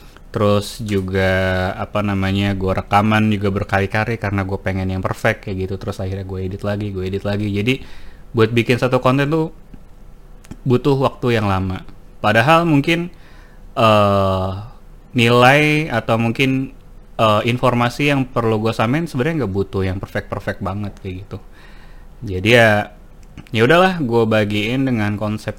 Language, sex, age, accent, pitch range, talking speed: Indonesian, male, 20-39, native, 95-115 Hz, 145 wpm